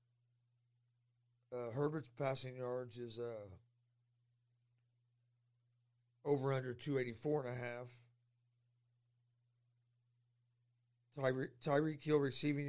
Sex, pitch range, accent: male, 120-140 Hz, American